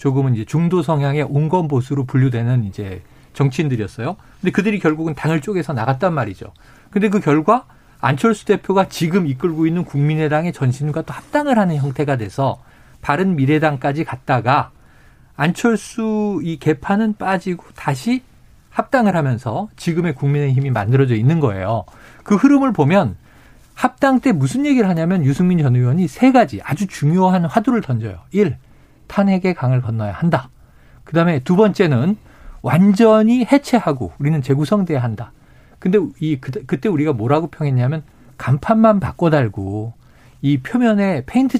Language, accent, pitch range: Korean, native, 130-195 Hz